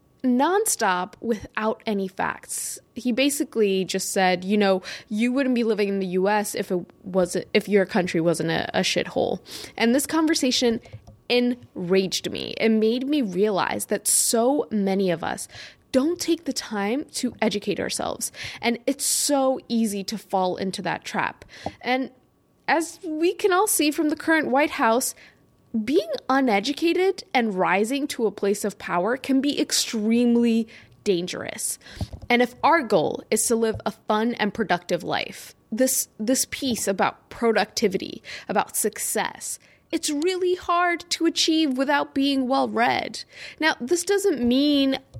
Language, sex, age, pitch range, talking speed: English, female, 10-29, 210-275 Hz, 150 wpm